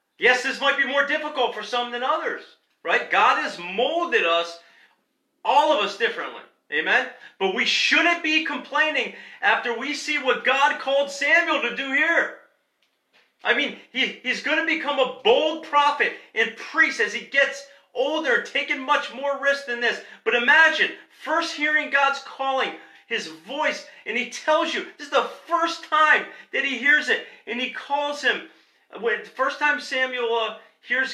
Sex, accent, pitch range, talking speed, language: male, American, 245-300 Hz, 165 wpm, English